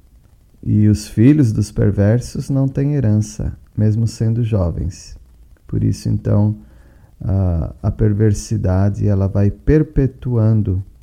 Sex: male